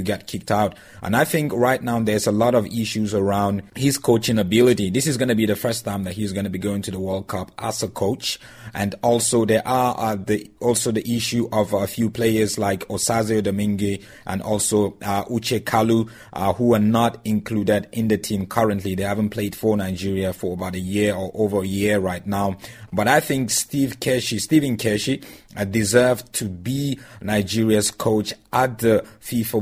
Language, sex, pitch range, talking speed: English, male, 100-115 Hz, 200 wpm